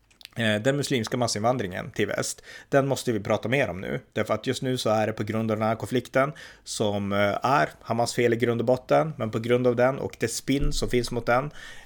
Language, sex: Swedish, male